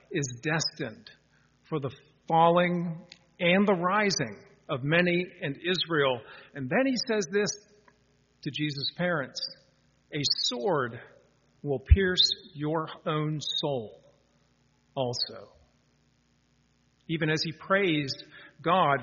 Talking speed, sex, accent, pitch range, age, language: 105 wpm, male, American, 140-170 Hz, 50-69, English